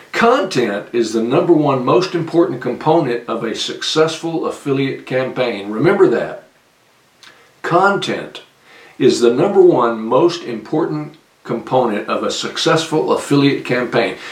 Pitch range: 125-175 Hz